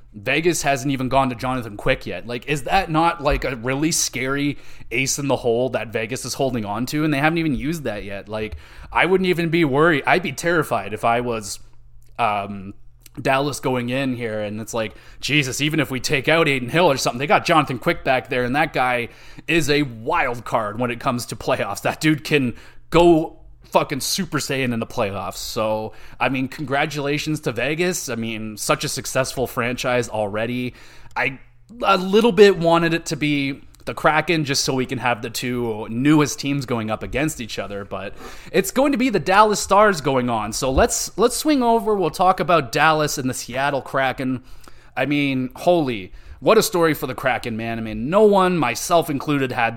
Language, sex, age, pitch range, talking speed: English, male, 20-39, 115-155 Hz, 205 wpm